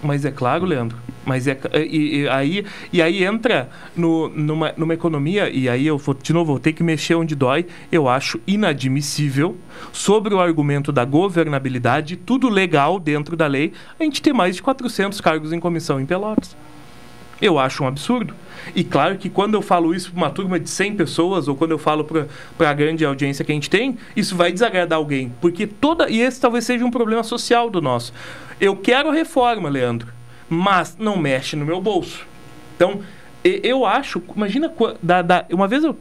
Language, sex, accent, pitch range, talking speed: Portuguese, male, Brazilian, 150-195 Hz, 190 wpm